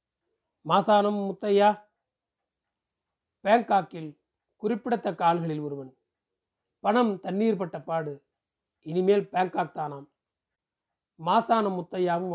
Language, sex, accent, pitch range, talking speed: Tamil, male, native, 155-205 Hz, 75 wpm